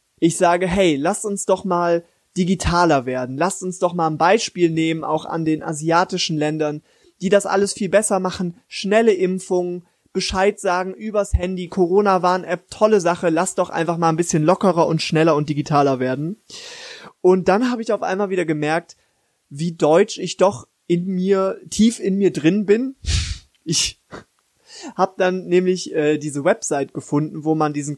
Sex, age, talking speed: male, 20-39, 165 wpm